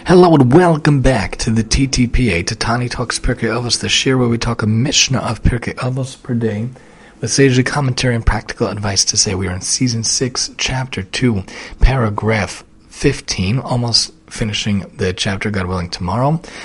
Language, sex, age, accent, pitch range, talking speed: English, male, 30-49, American, 105-125 Hz, 170 wpm